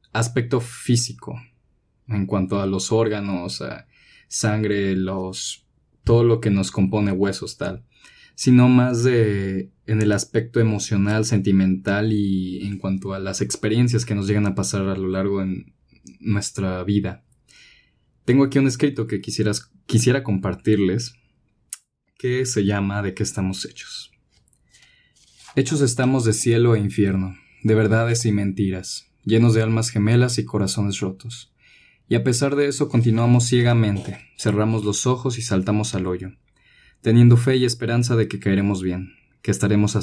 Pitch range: 100-120 Hz